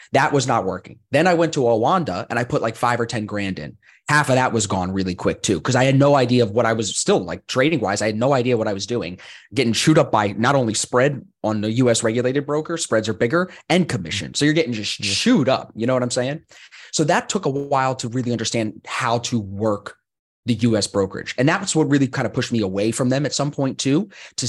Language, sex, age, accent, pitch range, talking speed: English, male, 30-49, American, 105-140 Hz, 255 wpm